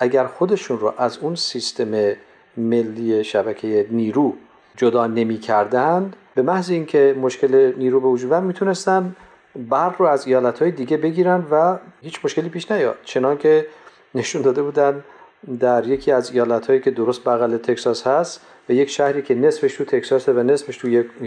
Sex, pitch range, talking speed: male, 120-185 Hz, 155 wpm